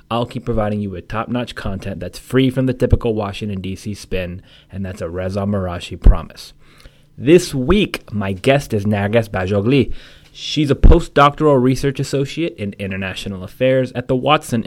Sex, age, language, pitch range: male, 30-49, English, 100-130 Hz